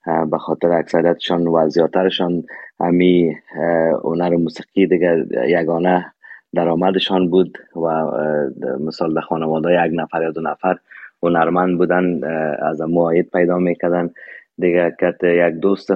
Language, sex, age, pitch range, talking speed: Persian, male, 20-39, 80-90 Hz, 115 wpm